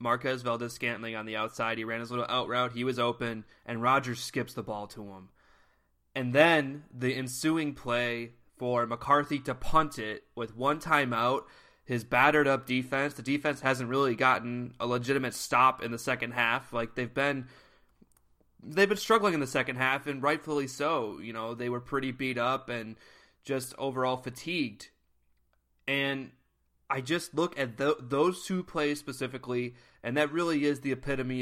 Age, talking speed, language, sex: 20-39, 175 wpm, English, male